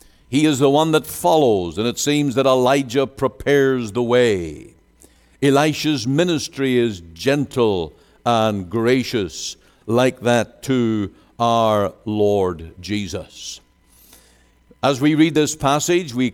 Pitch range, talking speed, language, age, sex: 110-150 Hz, 120 wpm, English, 60-79, male